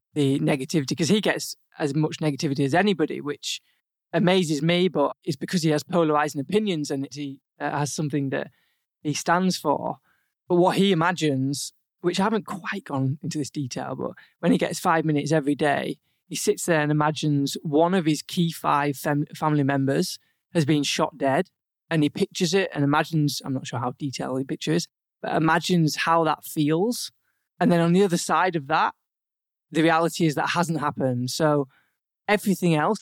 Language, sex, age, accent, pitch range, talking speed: English, male, 20-39, British, 150-180 Hz, 185 wpm